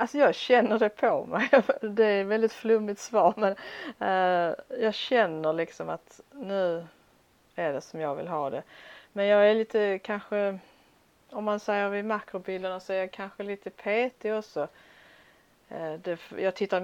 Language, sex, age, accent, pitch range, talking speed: Swedish, female, 40-59, native, 160-200 Hz, 155 wpm